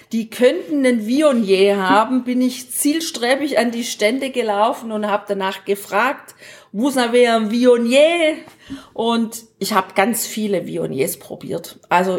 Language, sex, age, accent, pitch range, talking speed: German, female, 40-59, German, 210-270 Hz, 145 wpm